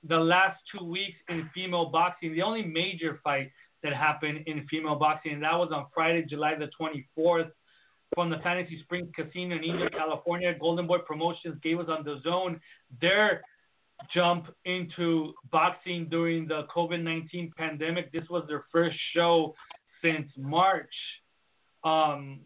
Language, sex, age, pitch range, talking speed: English, male, 30-49, 155-175 Hz, 150 wpm